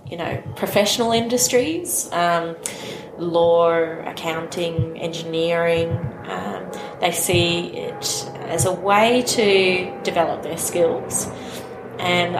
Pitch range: 165-180 Hz